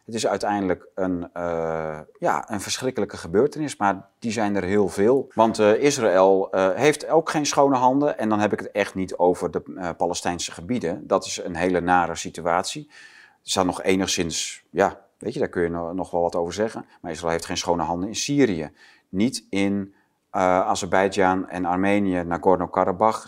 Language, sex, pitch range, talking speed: Dutch, male, 90-120 Hz, 190 wpm